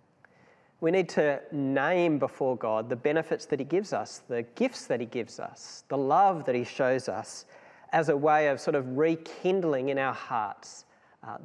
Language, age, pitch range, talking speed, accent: English, 40-59, 125-170 Hz, 185 wpm, Australian